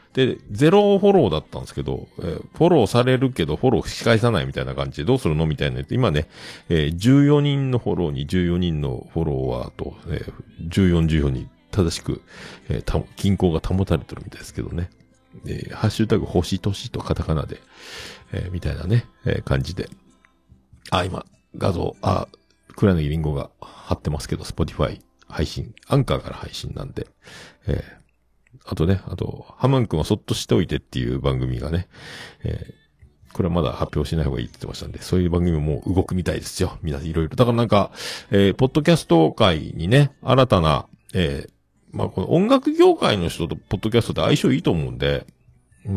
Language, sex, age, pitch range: Japanese, male, 50-69, 75-120 Hz